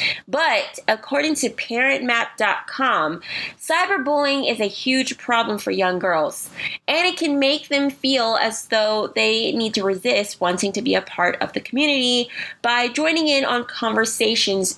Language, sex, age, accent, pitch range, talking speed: English, female, 20-39, American, 205-280 Hz, 150 wpm